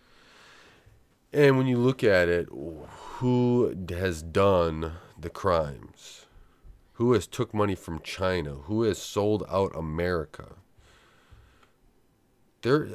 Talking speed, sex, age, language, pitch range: 105 wpm, male, 30-49, English, 75-100 Hz